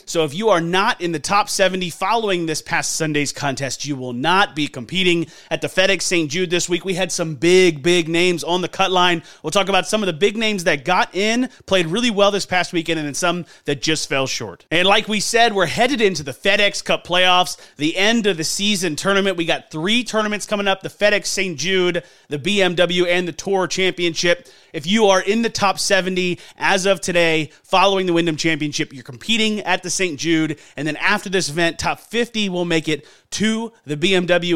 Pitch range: 160-195 Hz